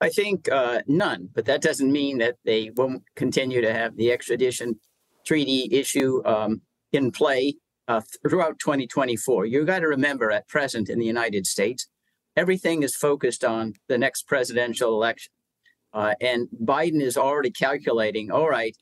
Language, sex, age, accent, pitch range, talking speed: English, male, 50-69, American, 120-160 Hz, 160 wpm